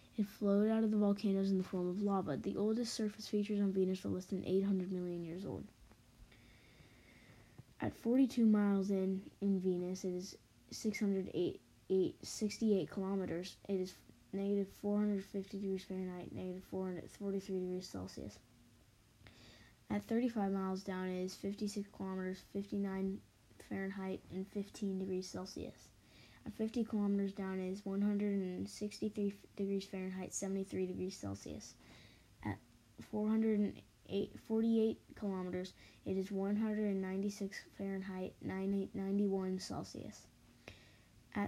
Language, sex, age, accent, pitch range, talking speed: English, female, 20-39, American, 185-205 Hz, 125 wpm